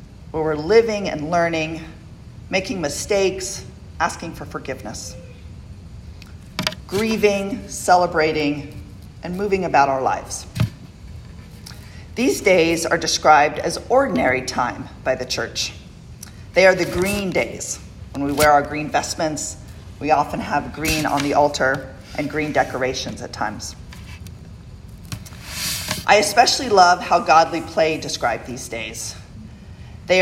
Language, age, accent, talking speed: English, 40-59, American, 120 wpm